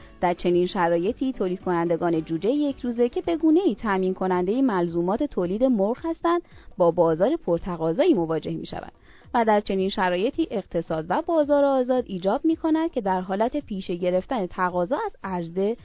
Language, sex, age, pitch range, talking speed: Persian, female, 20-39, 175-270 Hz, 150 wpm